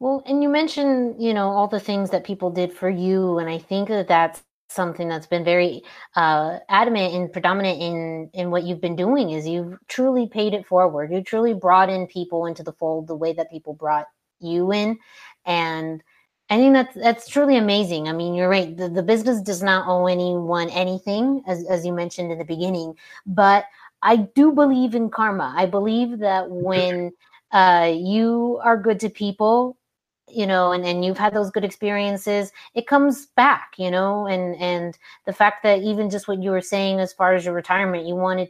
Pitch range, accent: 170-210 Hz, American